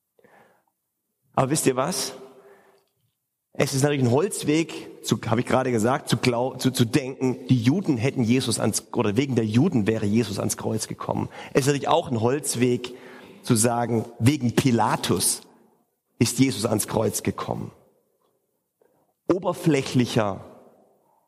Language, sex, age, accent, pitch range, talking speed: German, male, 40-59, German, 130-185 Hz, 140 wpm